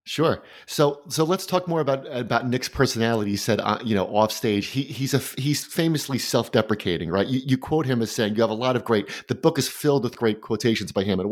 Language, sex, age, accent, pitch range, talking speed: English, male, 30-49, American, 110-145 Hz, 250 wpm